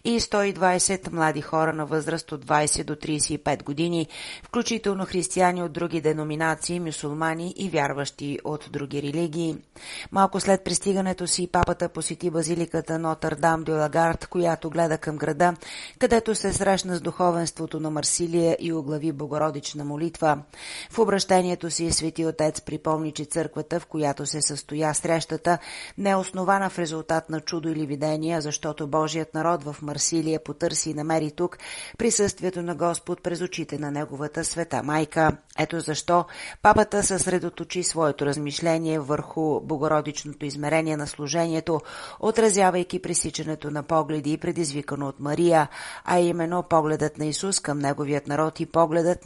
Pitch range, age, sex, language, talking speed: 150-175 Hz, 40-59, female, Bulgarian, 140 wpm